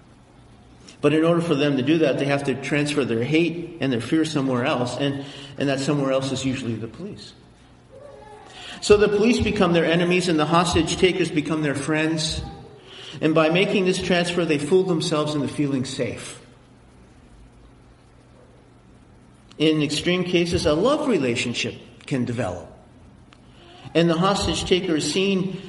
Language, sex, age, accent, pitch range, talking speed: English, male, 50-69, American, 135-170 Hz, 155 wpm